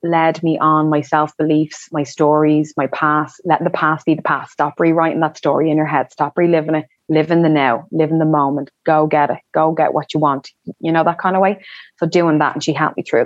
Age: 20-39